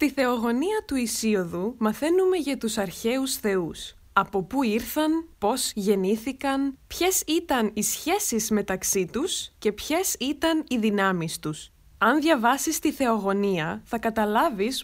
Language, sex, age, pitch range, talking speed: Greek, female, 20-39, 200-305 Hz, 130 wpm